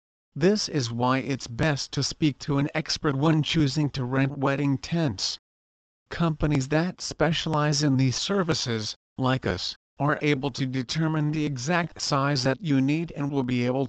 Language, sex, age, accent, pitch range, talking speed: English, male, 50-69, American, 120-155 Hz, 165 wpm